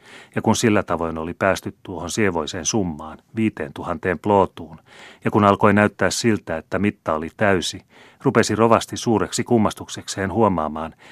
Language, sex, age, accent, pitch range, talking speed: Finnish, male, 30-49, native, 85-110 Hz, 140 wpm